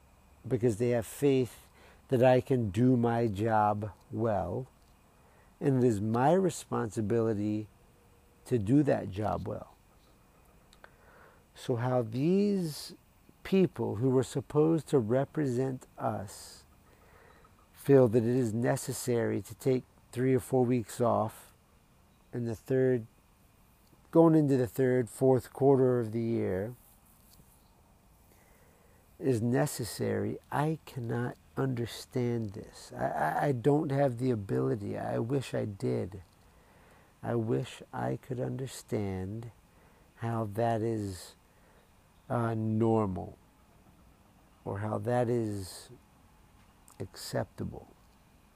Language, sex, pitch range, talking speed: English, male, 105-130 Hz, 110 wpm